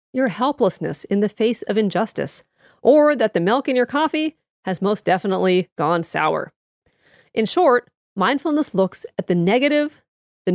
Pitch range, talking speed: 190-265 Hz, 155 wpm